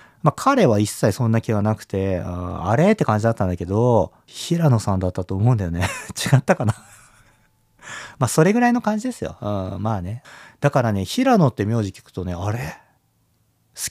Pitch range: 105-155 Hz